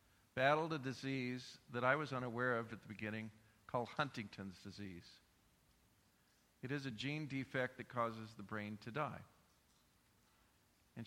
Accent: American